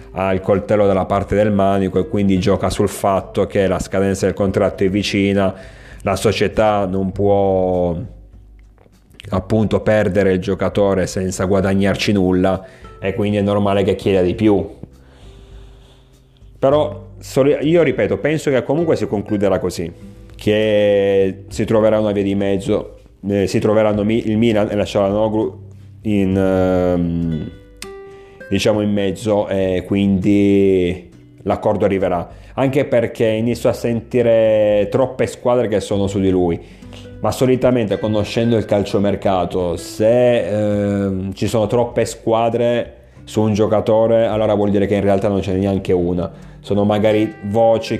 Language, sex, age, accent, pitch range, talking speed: Italian, male, 30-49, native, 95-110 Hz, 135 wpm